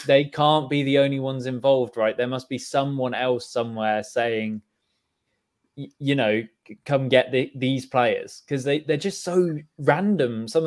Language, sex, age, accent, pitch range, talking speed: English, male, 20-39, British, 115-140 Hz, 150 wpm